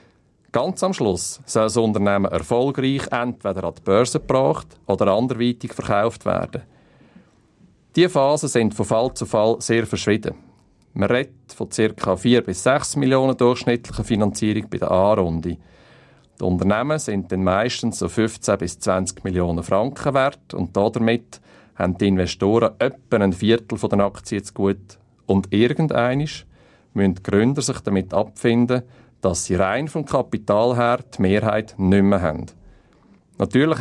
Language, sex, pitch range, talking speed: German, male, 95-125 Hz, 145 wpm